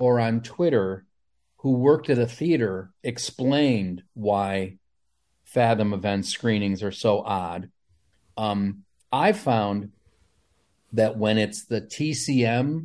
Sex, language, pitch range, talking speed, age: male, English, 95-130 Hz, 110 wpm, 40-59